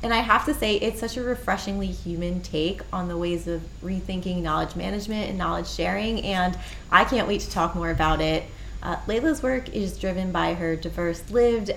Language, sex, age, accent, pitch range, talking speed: English, female, 20-39, American, 175-220 Hz, 200 wpm